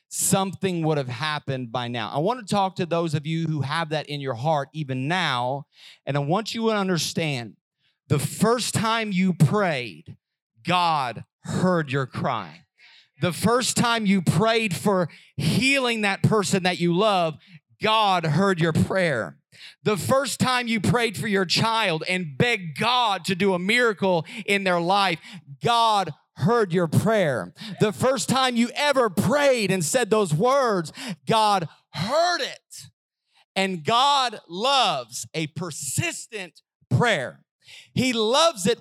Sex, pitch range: male, 160-225 Hz